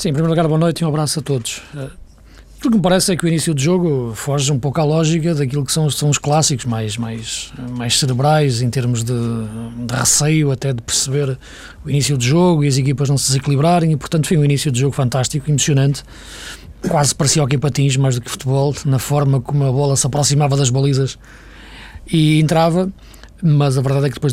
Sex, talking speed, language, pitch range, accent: male, 220 wpm, Portuguese, 130-155 Hz, Portuguese